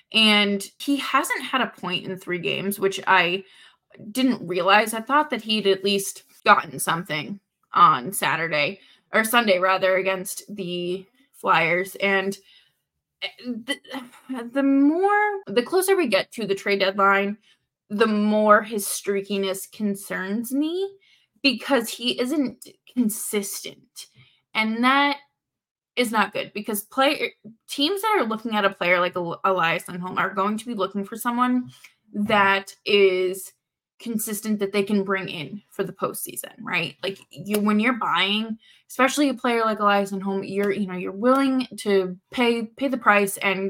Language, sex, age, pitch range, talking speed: English, female, 20-39, 190-240 Hz, 150 wpm